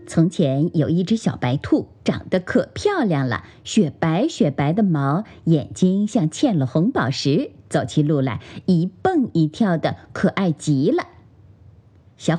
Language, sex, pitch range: Chinese, female, 135-215 Hz